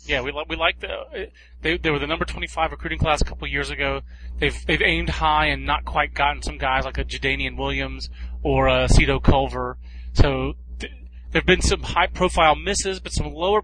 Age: 30-49